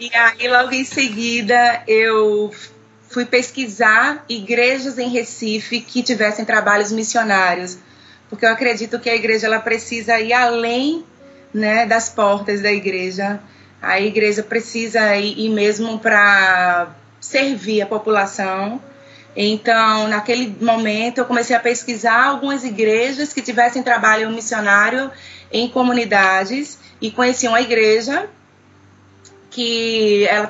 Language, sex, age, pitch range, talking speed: Portuguese, female, 20-39, 215-245 Hz, 120 wpm